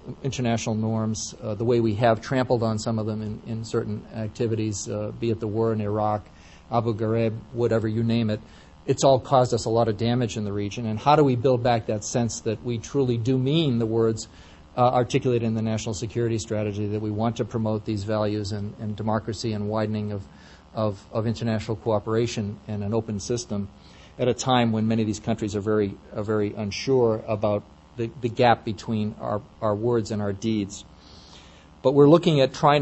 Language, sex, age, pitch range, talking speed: English, male, 40-59, 105-120 Hz, 200 wpm